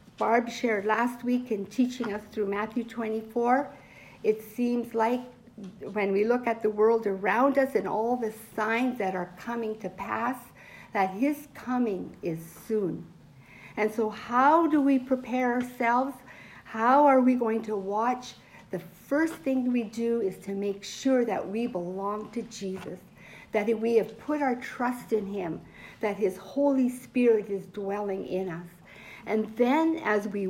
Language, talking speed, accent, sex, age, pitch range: English, 160 wpm, American, female, 60-79, 195-250 Hz